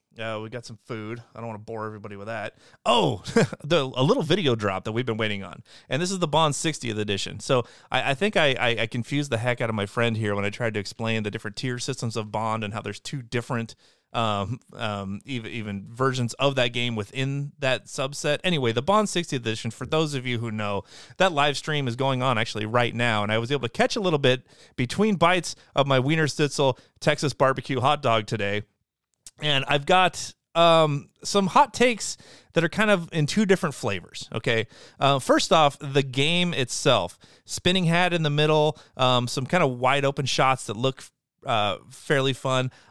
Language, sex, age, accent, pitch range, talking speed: English, male, 30-49, American, 115-155 Hz, 215 wpm